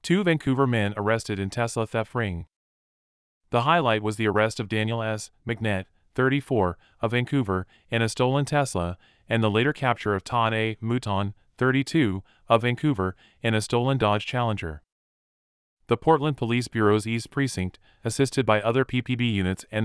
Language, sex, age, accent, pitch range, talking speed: English, male, 30-49, American, 100-120 Hz, 155 wpm